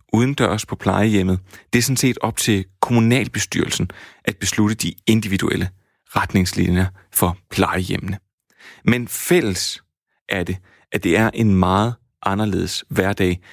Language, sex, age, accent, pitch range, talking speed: Danish, male, 30-49, native, 95-115 Hz, 130 wpm